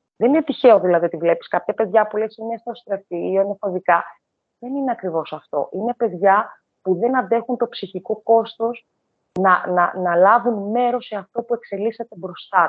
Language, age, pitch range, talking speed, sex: Greek, 30-49, 180-250 Hz, 170 wpm, female